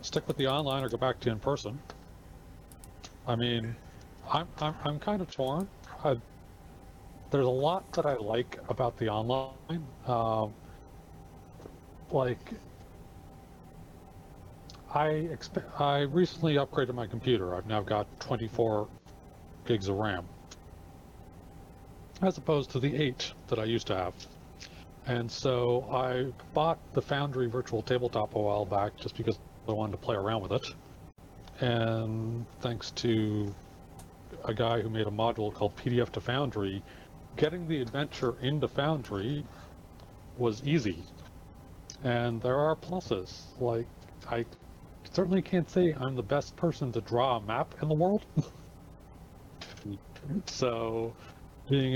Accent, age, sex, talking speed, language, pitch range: American, 40-59, male, 135 wpm, English, 100-135 Hz